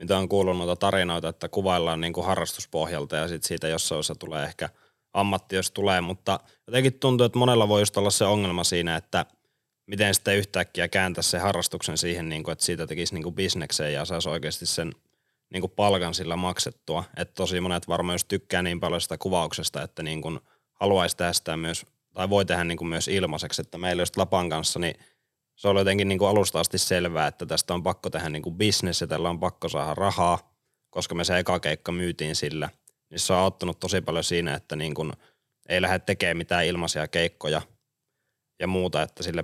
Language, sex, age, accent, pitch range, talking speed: Finnish, male, 20-39, native, 80-95 Hz, 190 wpm